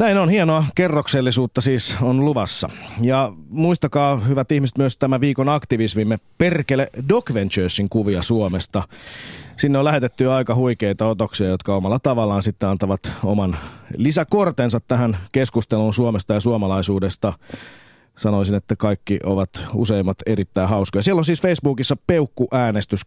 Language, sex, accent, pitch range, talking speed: Finnish, male, native, 100-140 Hz, 130 wpm